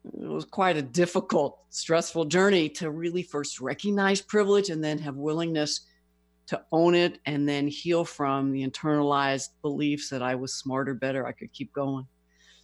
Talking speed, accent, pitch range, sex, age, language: 165 wpm, American, 140-175 Hz, female, 60-79, English